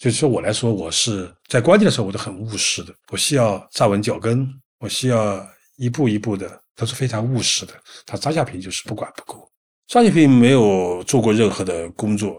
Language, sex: Chinese, male